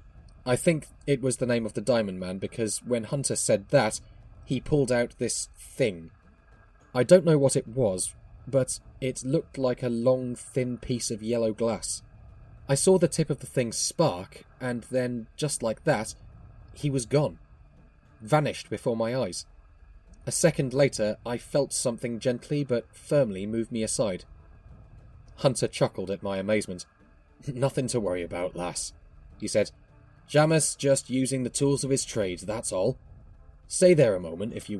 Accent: British